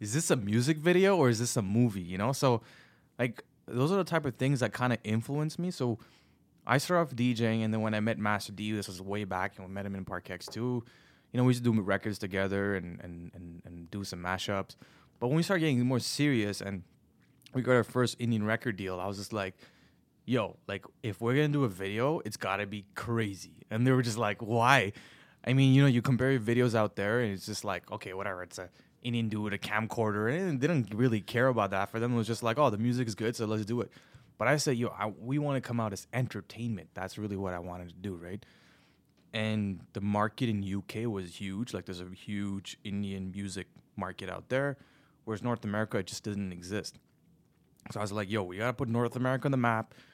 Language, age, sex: English, 20-39, male